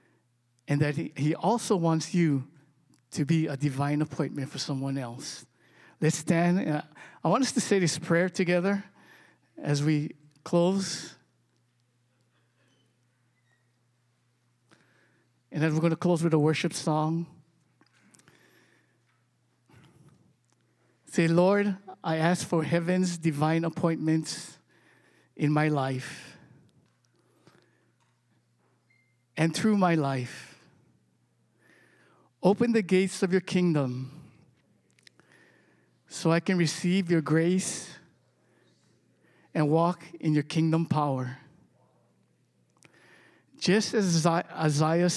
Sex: male